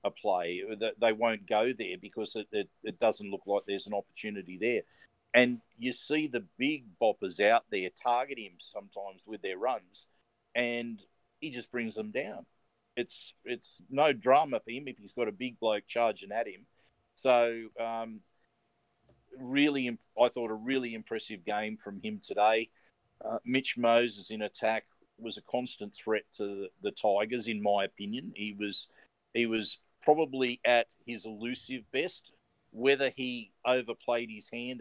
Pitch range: 105-120 Hz